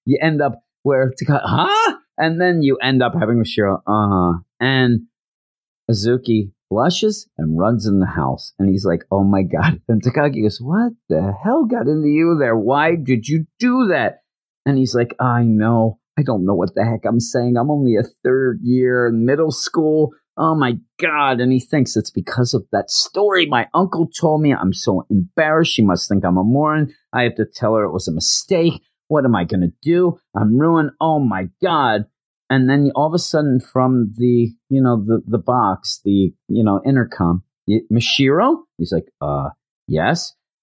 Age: 40-59